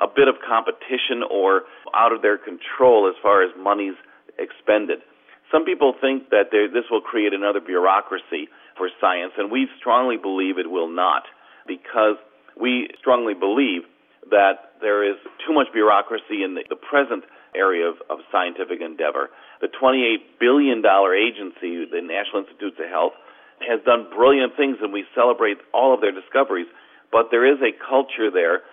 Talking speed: 160 wpm